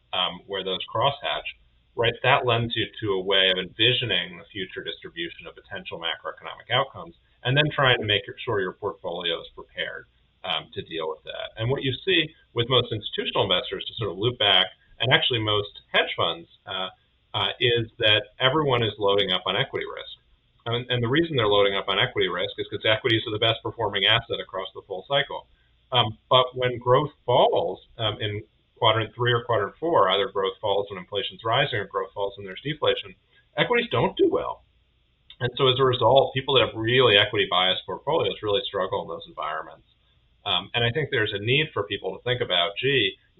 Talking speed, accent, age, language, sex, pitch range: 200 wpm, American, 40-59, English, male, 105-165 Hz